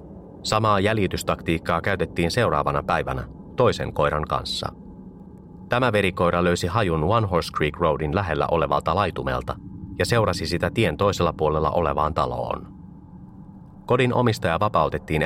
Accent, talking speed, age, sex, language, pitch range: native, 120 wpm, 30-49, male, Finnish, 75-100 Hz